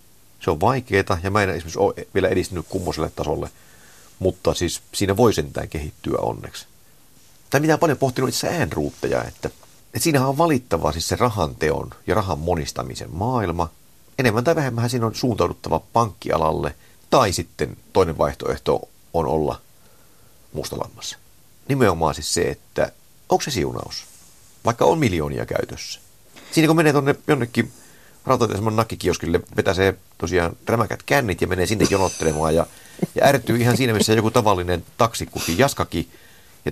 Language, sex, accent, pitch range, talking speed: Finnish, male, native, 85-125 Hz, 150 wpm